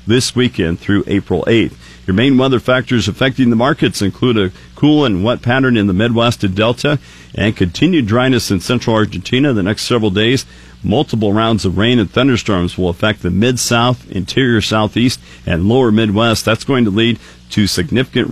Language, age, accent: English, 50-69, American